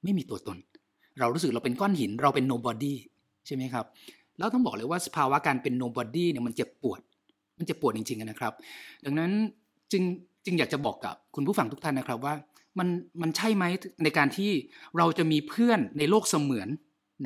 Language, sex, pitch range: Thai, male, 130-185 Hz